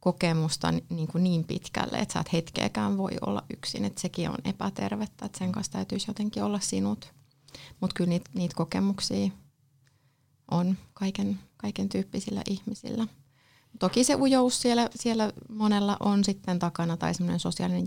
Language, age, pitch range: Finnish, 30-49, 145-195 Hz